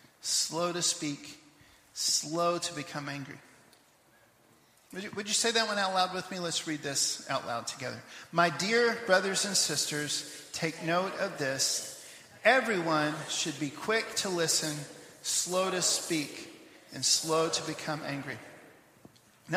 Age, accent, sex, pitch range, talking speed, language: 40-59, American, male, 150-190 Hz, 145 wpm, English